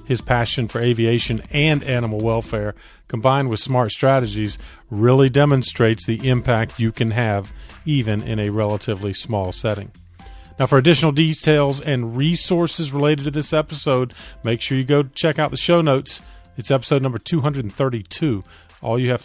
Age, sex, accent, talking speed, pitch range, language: 40-59, male, American, 155 wpm, 110-140 Hz, English